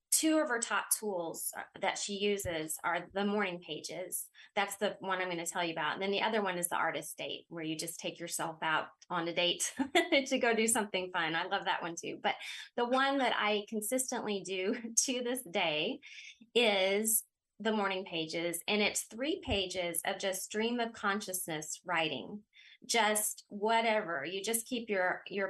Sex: female